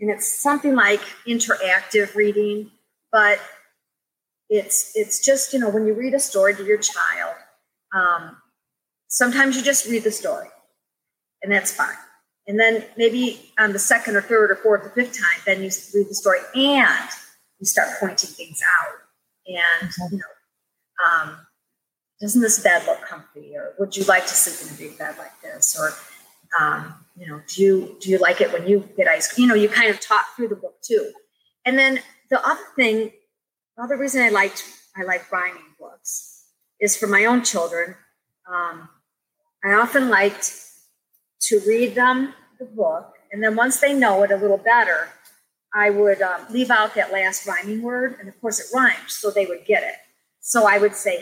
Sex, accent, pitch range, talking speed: female, American, 195-250 Hz, 185 wpm